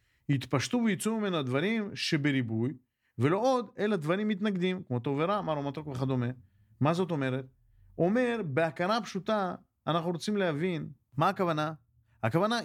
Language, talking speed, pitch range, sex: Hebrew, 135 wpm, 130-205 Hz, male